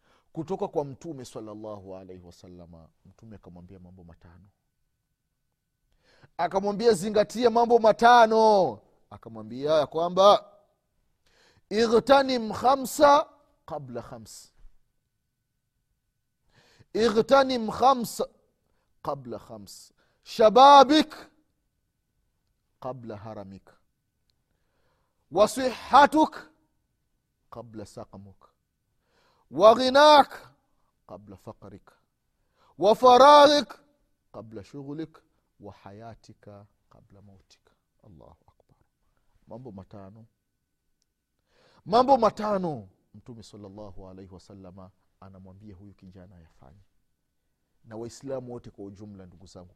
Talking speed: 75 wpm